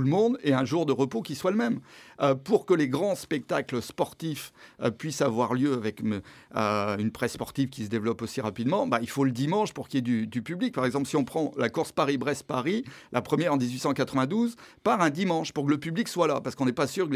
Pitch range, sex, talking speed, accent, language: 125-155 Hz, male, 250 wpm, French, French